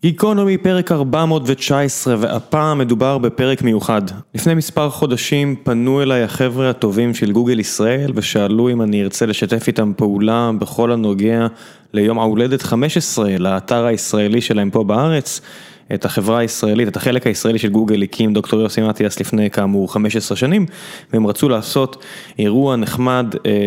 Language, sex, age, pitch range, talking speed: Hebrew, male, 20-39, 110-145 Hz, 140 wpm